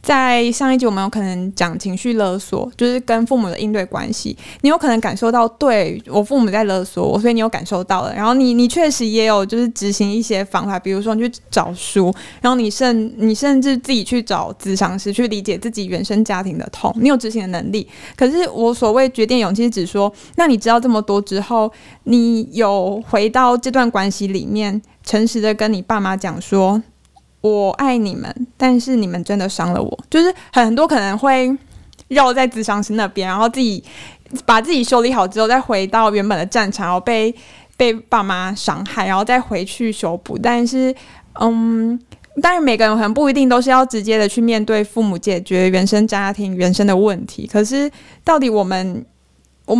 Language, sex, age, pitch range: Chinese, female, 20-39, 200-245 Hz